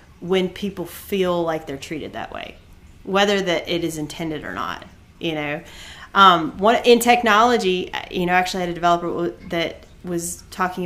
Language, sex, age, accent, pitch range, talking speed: English, female, 30-49, American, 165-220 Hz, 170 wpm